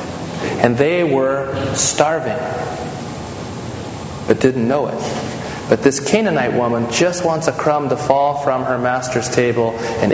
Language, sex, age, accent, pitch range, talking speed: English, male, 40-59, American, 130-170 Hz, 135 wpm